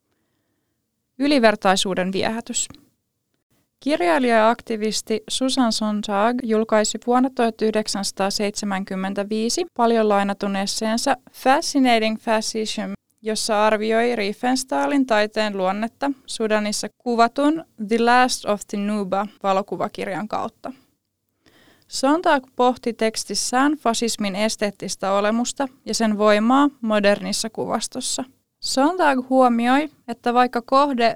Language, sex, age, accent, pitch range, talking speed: Finnish, female, 20-39, native, 205-250 Hz, 85 wpm